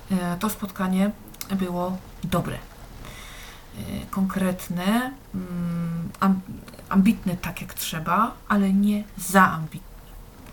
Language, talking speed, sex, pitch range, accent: Polish, 75 wpm, female, 175-200 Hz, native